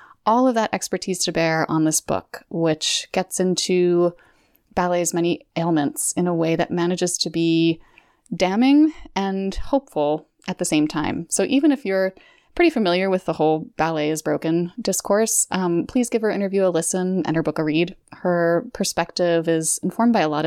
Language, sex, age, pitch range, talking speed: English, female, 20-39, 165-215 Hz, 180 wpm